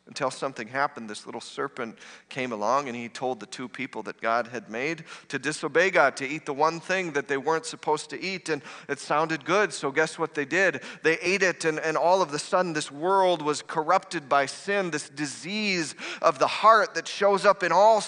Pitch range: 160-205 Hz